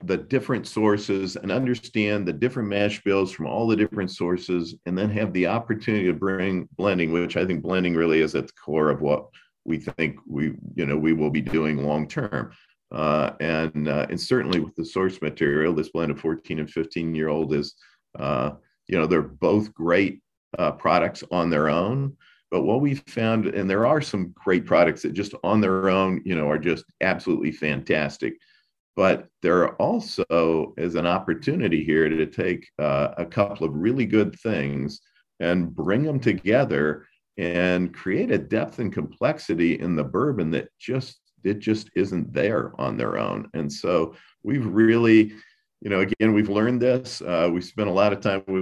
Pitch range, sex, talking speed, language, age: 80-105 Hz, male, 180 wpm, English, 50-69